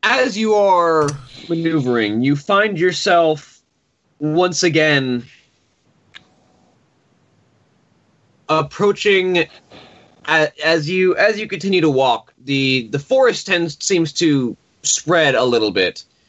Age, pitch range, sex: 20-39, 110-155 Hz, male